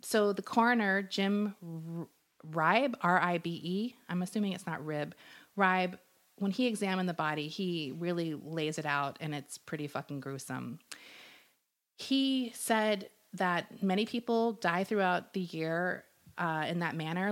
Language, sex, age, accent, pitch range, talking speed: English, female, 30-49, American, 155-200 Hz, 140 wpm